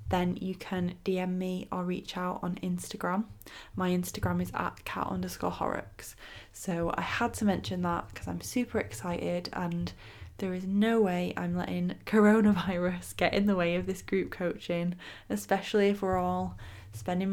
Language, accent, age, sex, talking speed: English, British, 10-29, female, 165 wpm